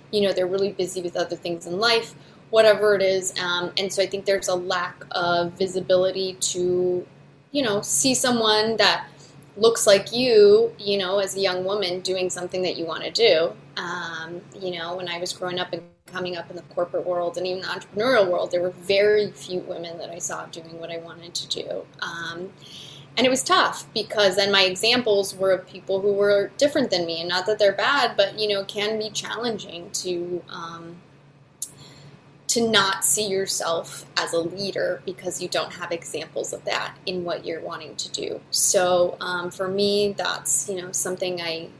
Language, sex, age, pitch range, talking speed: English, female, 20-39, 170-200 Hz, 200 wpm